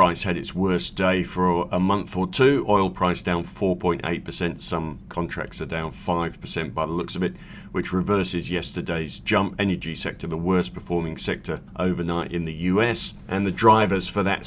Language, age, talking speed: English, 50-69, 175 wpm